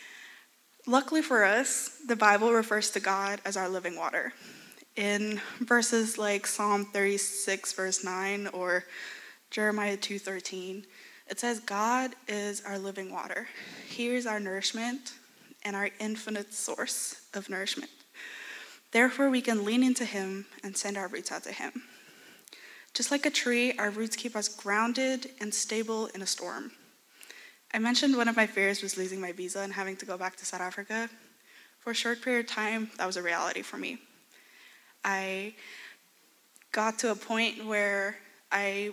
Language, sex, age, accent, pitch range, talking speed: English, female, 10-29, American, 195-235 Hz, 160 wpm